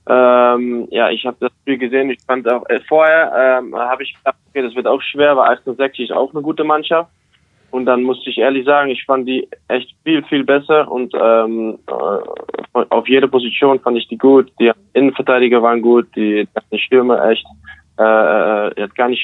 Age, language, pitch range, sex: 20-39, German, 115-130 Hz, male